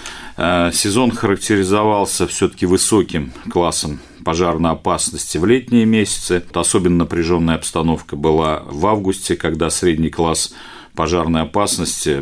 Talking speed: 105 wpm